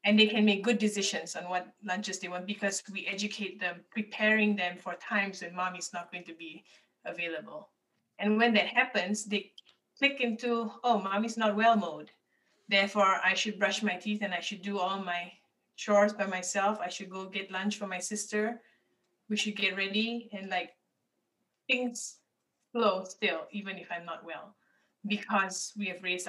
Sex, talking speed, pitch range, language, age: female, 180 wpm, 185-220 Hz, English, 20-39